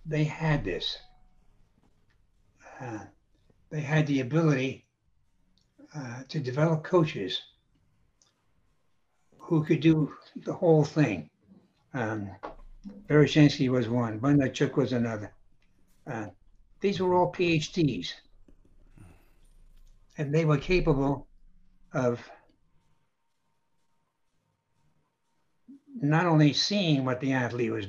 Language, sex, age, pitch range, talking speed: English, male, 60-79, 110-155 Hz, 90 wpm